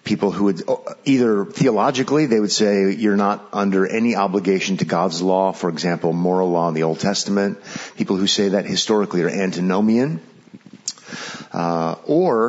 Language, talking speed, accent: English, 160 wpm, American